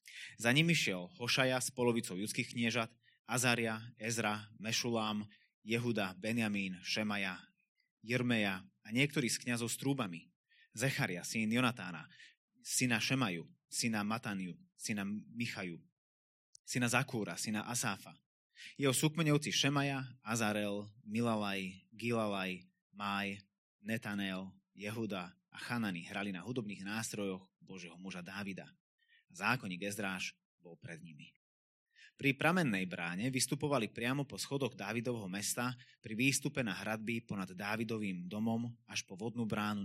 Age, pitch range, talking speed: 20-39, 100-125 Hz, 115 wpm